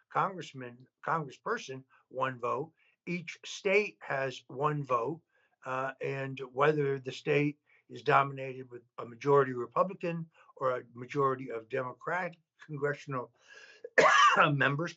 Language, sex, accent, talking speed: English, male, American, 110 wpm